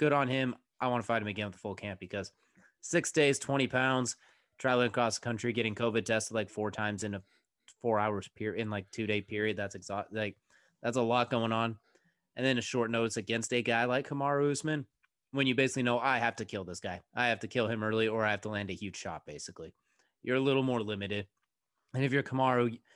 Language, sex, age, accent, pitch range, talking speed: English, male, 30-49, American, 105-130 Hz, 235 wpm